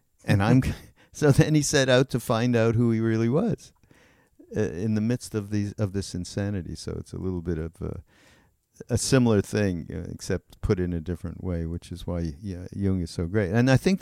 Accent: American